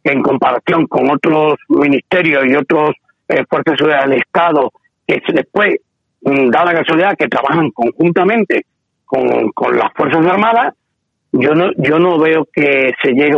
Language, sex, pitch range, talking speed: Spanish, male, 155-215 Hz, 145 wpm